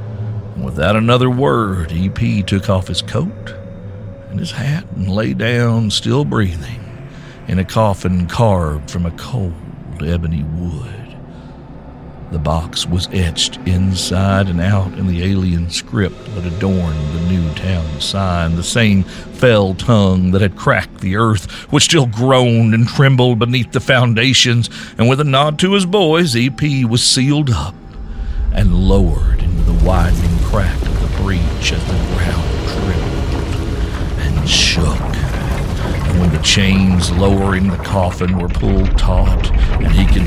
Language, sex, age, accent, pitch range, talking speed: English, male, 60-79, American, 90-125 Hz, 145 wpm